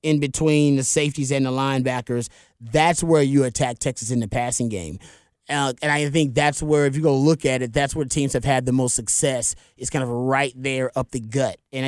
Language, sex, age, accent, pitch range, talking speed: English, male, 30-49, American, 130-150 Hz, 225 wpm